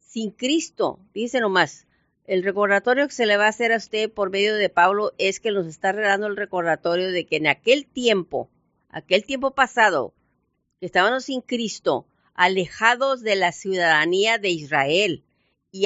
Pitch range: 185-235 Hz